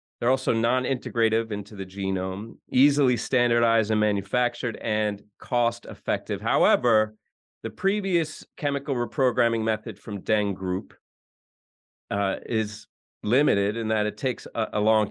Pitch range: 100-125 Hz